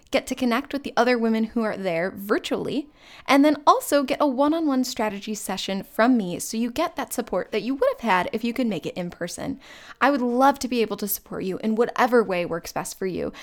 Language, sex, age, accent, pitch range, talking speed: English, female, 10-29, American, 200-265 Hz, 240 wpm